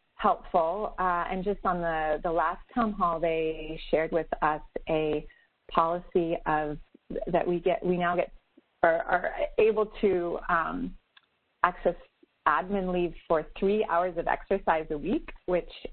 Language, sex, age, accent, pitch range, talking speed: English, female, 30-49, American, 150-180 Hz, 145 wpm